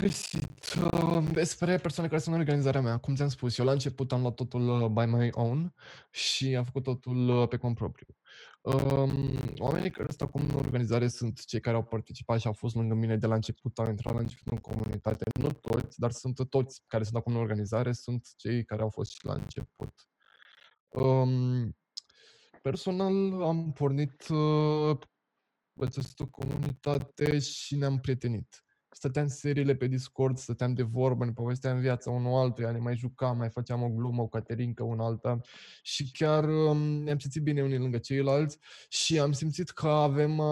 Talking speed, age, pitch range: 175 wpm, 20-39, 120-145 Hz